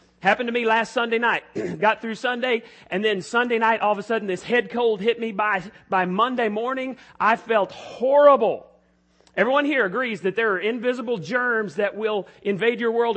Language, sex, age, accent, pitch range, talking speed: English, male, 40-59, American, 190-255 Hz, 190 wpm